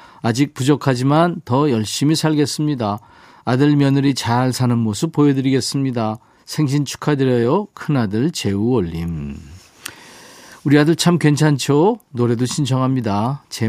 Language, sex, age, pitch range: Korean, male, 40-59, 110-150 Hz